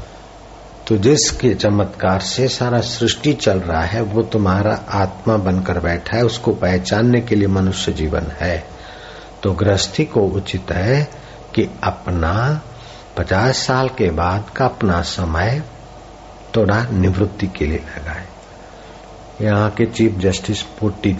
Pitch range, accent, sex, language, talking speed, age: 95-125 Hz, native, male, Hindi, 135 wpm, 60-79